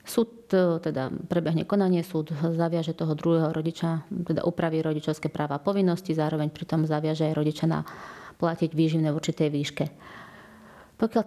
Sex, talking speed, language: female, 140 wpm, Slovak